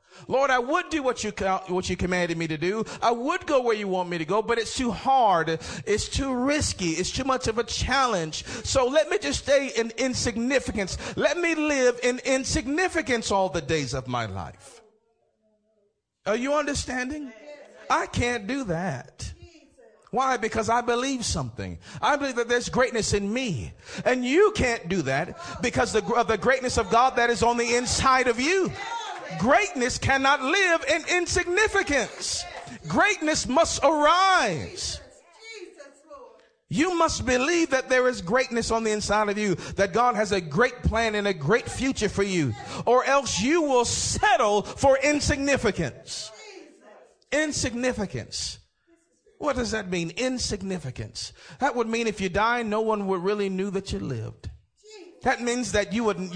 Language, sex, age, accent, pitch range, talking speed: English, male, 40-59, American, 200-280 Hz, 165 wpm